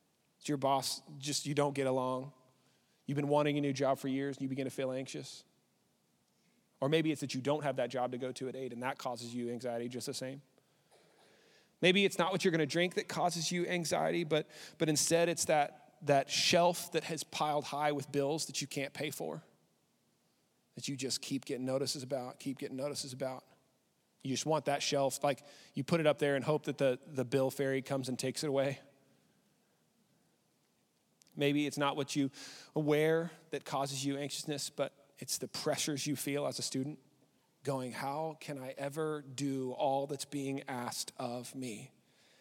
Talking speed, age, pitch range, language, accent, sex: 195 wpm, 30-49, 130-160 Hz, English, American, male